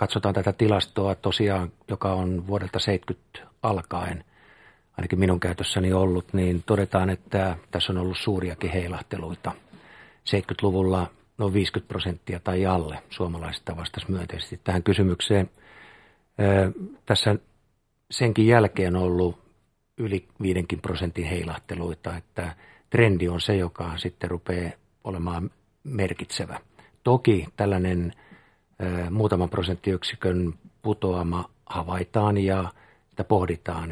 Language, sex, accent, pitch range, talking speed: Finnish, male, native, 90-105 Hz, 105 wpm